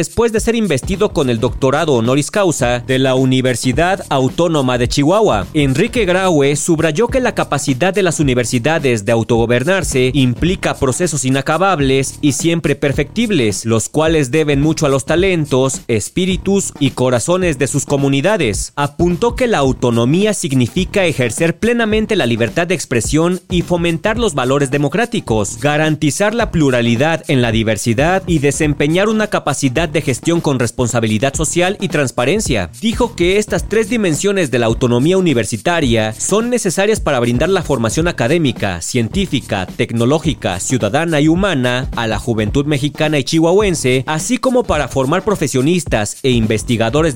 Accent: Mexican